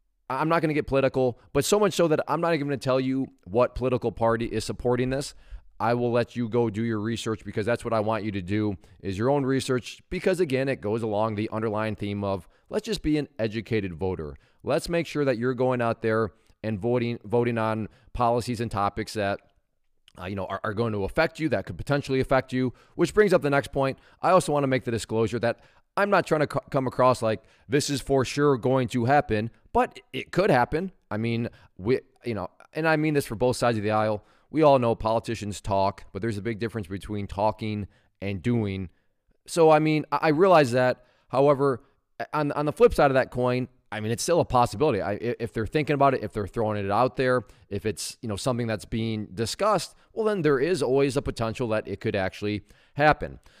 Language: English